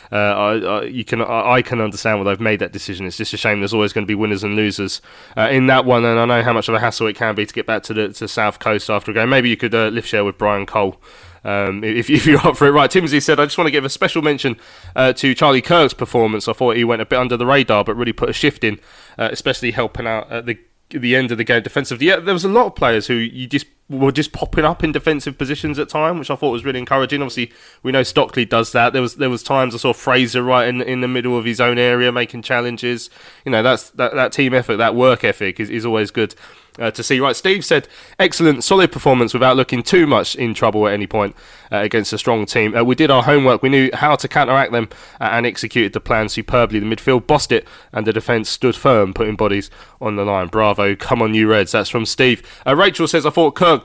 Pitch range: 110-135 Hz